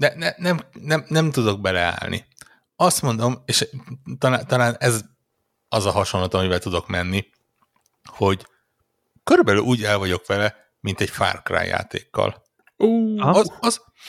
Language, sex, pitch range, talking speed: Hungarian, male, 90-125 Hz, 135 wpm